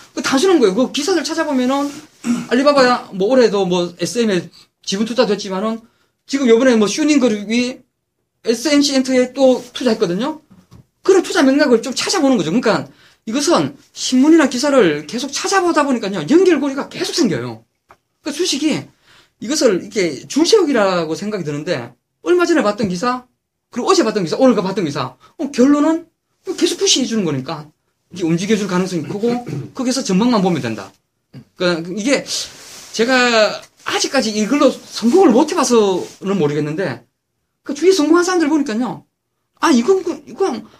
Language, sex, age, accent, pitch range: Korean, male, 20-39, native, 200-300 Hz